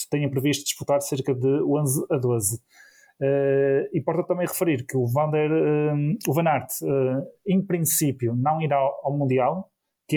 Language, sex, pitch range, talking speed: Portuguese, male, 130-150 Hz, 135 wpm